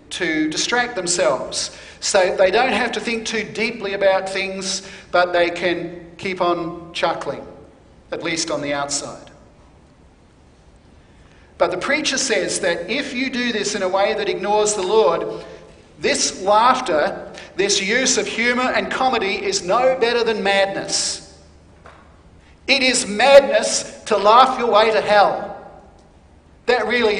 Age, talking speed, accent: 50-69, 140 wpm, Australian